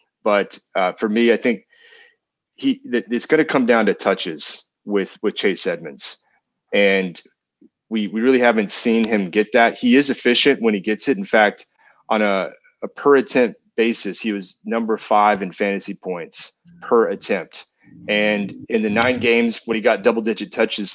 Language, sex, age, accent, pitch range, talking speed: English, male, 30-49, American, 100-135 Hz, 180 wpm